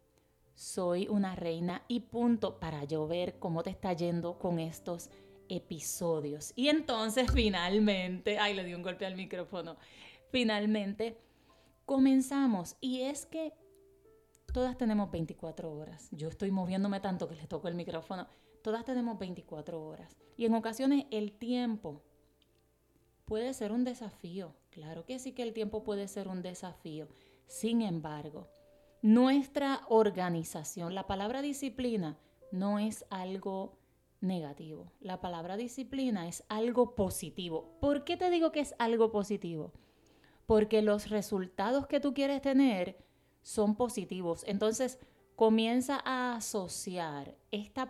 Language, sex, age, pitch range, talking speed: Spanish, female, 30-49, 175-245 Hz, 130 wpm